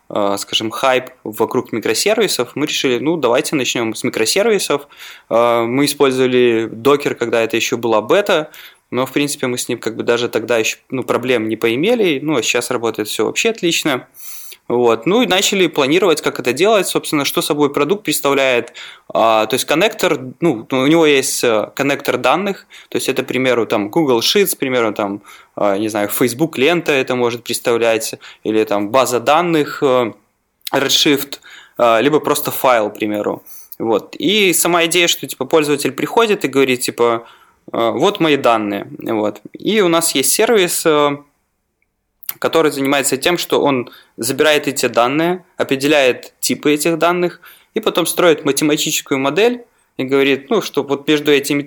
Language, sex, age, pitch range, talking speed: Russian, male, 20-39, 120-160 Hz, 155 wpm